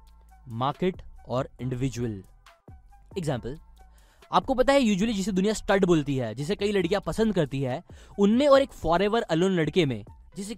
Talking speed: 135 wpm